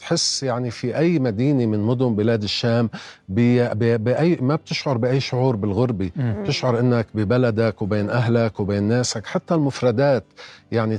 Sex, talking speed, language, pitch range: male, 145 wpm, Arabic, 105-125 Hz